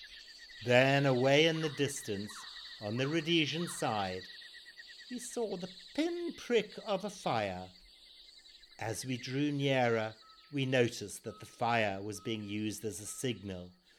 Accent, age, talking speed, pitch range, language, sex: British, 60-79, 135 wpm, 105-145 Hz, English, male